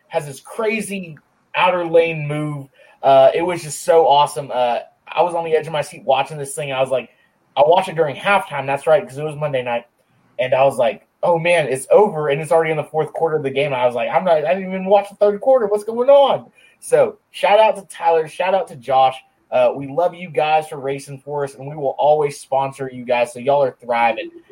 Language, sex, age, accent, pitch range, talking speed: English, male, 20-39, American, 135-185 Hz, 245 wpm